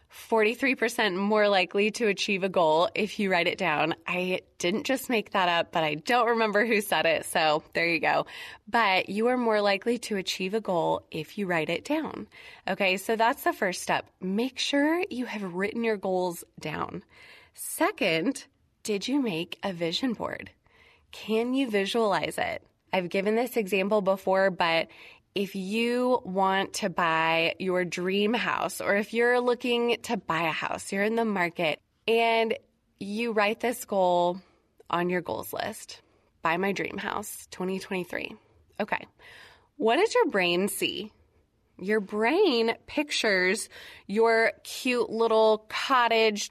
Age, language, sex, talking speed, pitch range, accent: 20-39, English, female, 155 wpm, 190-230 Hz, American